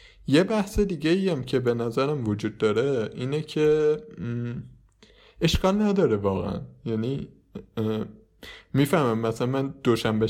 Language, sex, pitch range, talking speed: Persian, male, 105-130 Hz, 115 wpm